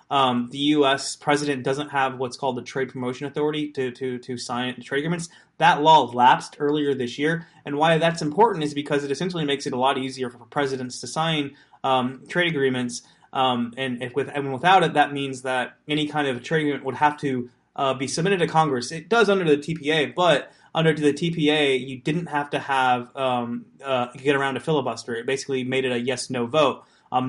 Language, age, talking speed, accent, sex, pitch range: English, 20-39, 210 wpm, American, male, 130-150 Hz